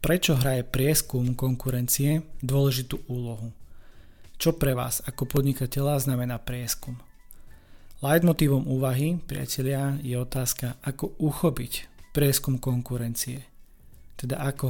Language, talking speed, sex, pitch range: Slovak, 100 wpm, male, 120-140 Hz